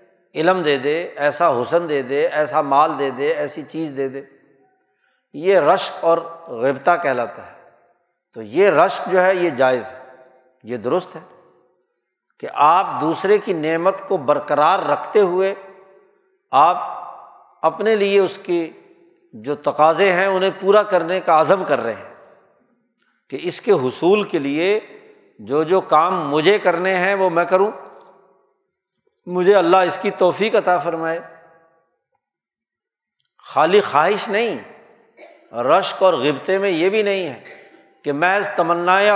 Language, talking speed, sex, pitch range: Urdu, 145 wpm, male, 155-195 Hz